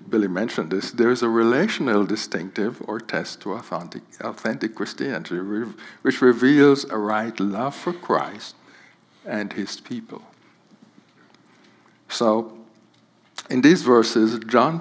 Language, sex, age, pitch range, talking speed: English, male, 60-79, 110-130 Hz, 120 wpm